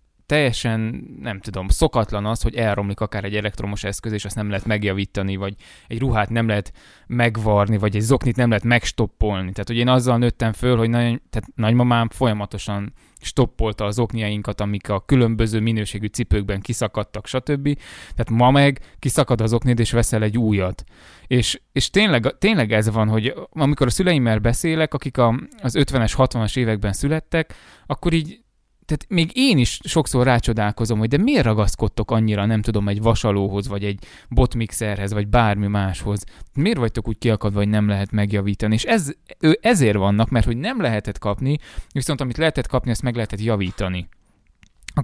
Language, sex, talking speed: Hungarian, male, 165 wpm